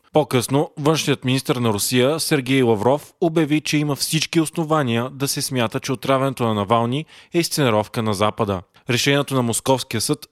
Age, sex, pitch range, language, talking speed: 20-39, male, 115-145 Hz, Bulgarian, 155 wpm